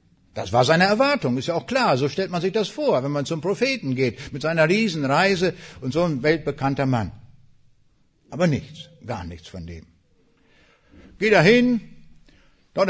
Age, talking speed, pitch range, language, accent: 60-79, 170 wpm, 120-165 Hz, German, German